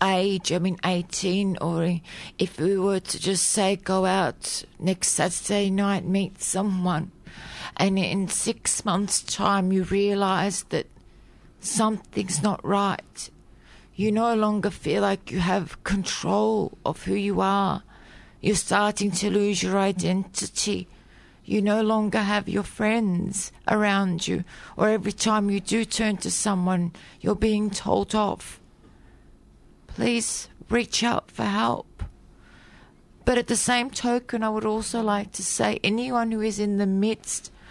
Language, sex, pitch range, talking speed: English, female, 190-215 Hz, 140 wpm